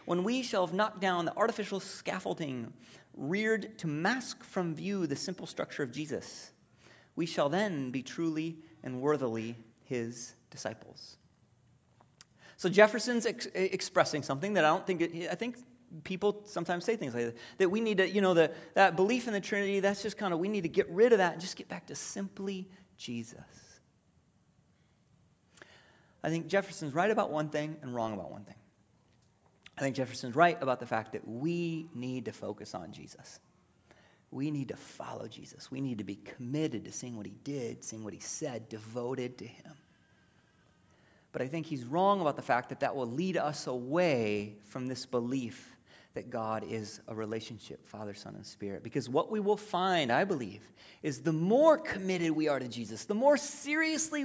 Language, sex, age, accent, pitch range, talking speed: English, male, 30-49, American, 125-195 Hz, 180 wpm